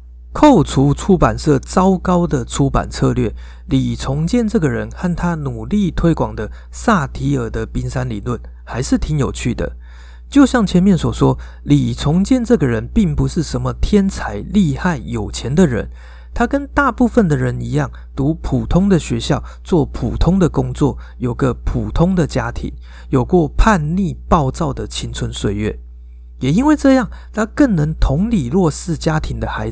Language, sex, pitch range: Chinese, male, 110-180 Hz